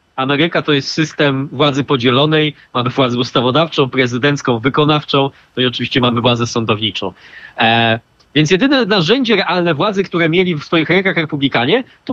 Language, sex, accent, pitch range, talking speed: Polish, male, native, 135-190 Hz, 150 wpm